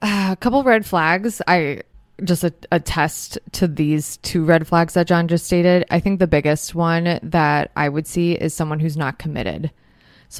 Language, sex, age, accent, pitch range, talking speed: English, female, 20-39, American, 155-180 Hz, 180 wpm